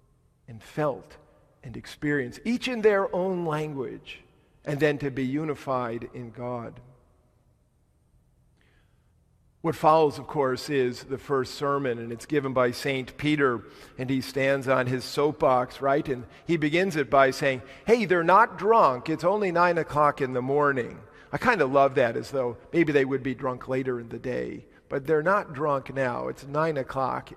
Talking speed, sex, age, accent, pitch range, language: 170 wpm, male, 50-69, American, 130-155 Hz, English